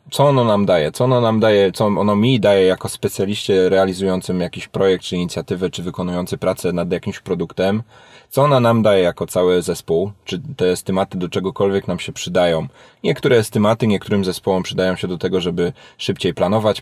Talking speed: 180 wpm